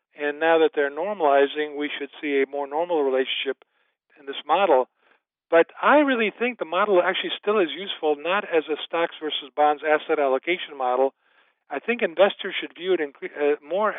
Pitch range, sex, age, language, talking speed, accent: 145-185 Hz, male, 50-69, English, 175 wpm, American